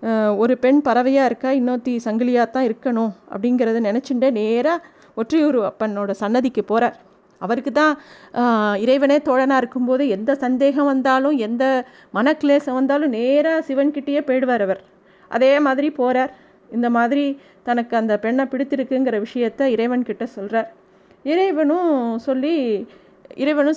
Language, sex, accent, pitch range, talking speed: Tamil, female, native, 225-275 Hz, 115 wpm